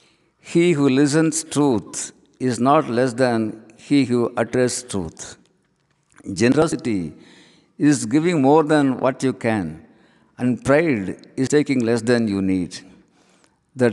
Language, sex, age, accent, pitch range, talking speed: Tamil, male, 60-79, native, 110-145 Hz, 125 wpm